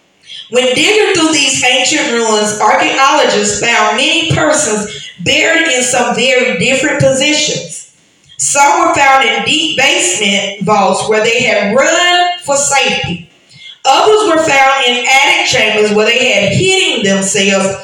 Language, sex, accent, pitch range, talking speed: English, female, American, 215-325 Hz, 135 wpm